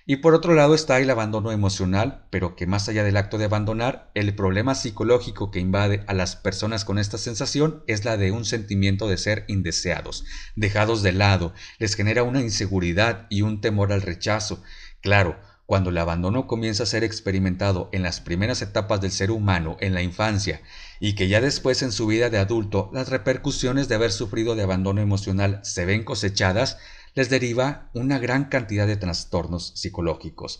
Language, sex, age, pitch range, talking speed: Spanish, male, 50-69, 95-125 Hz, 180 wpm